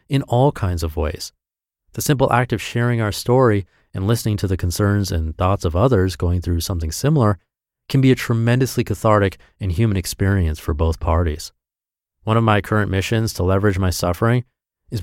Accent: American